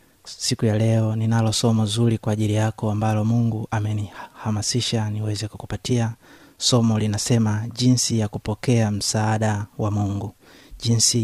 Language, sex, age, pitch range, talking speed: Swahili, male, 30-49, 110-120 Hz, 125 wpm